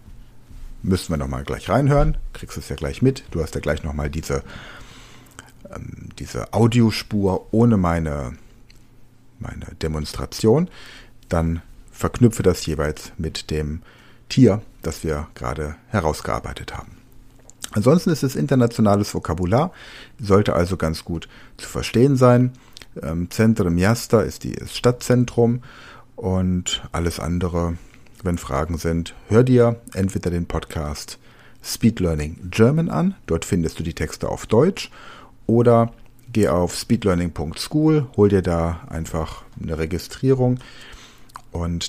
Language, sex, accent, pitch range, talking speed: Ukrainian, male, German, 80-120 Hz, 120 wpm